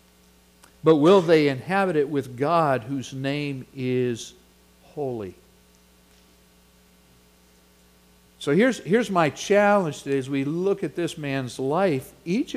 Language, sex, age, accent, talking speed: English, male, 60-79, American, 120 wpm